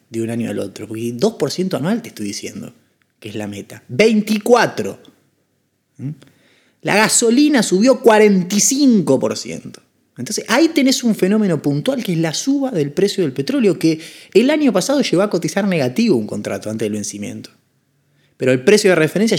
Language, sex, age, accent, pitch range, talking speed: Spanish, male, 20-39, Argentinian, 125-210 Hz, 165 wpm